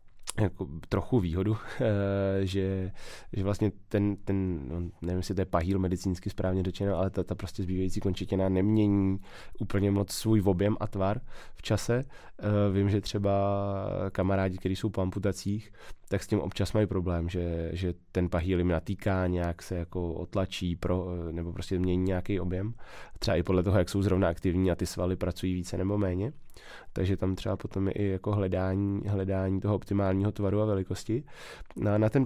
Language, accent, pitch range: Czech, native, 95-105 Hz